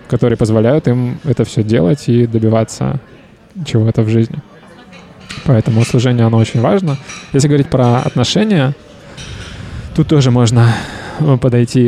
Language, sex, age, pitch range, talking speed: Russian, male, 20-39, 115-140 Hz, 120 wpm